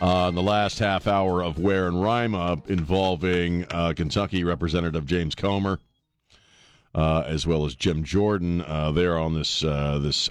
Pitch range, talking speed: 85-110 Hz, 175 wpm